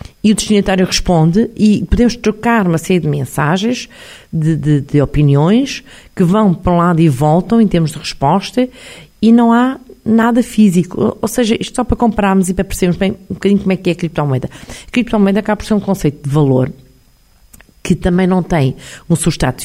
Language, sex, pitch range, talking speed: Portuguese, female, 145-200 Hz, 195 wpm